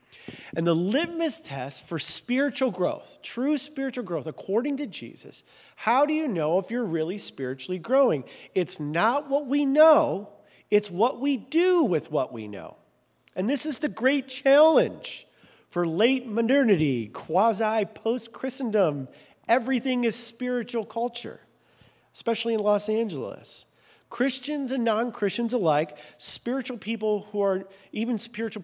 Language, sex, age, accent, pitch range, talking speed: English, male, 40-59, American, 175-255 Hz, 130 wpm